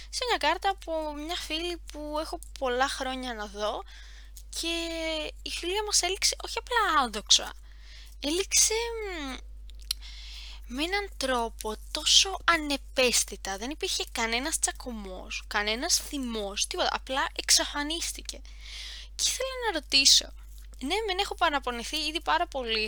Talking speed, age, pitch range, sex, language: 125 wpm, 20-39, 205-335 Hz, female, Greek